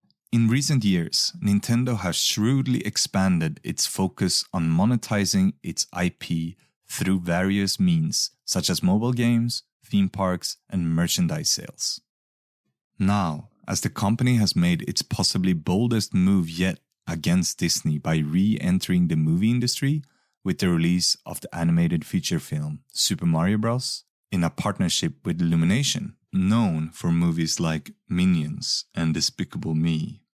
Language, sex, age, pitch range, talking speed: English, male, 30-49, 85-125 Hz, 130 wpm